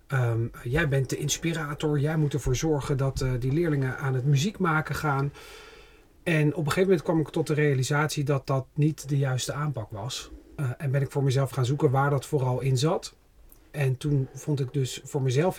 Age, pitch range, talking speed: 40-59, 130-155 Hz, 210 wpm